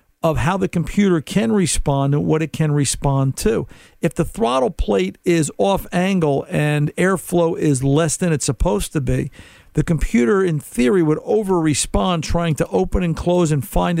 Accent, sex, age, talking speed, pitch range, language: American, male, 50-69, 175 wpm, 140-170 Hz, English